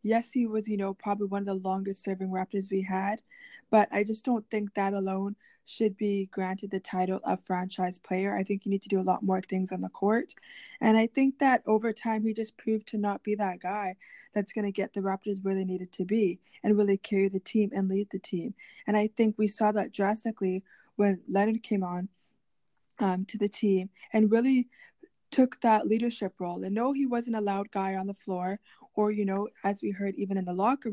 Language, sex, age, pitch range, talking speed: English, female, 20-39, 190-220 Hz, 225 wpm